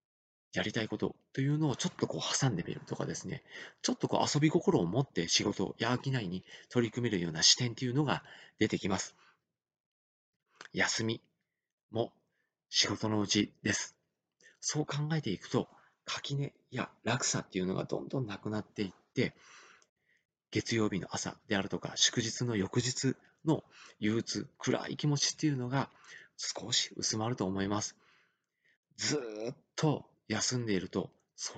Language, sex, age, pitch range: Japanese, male, 40-59, 100-140 Hz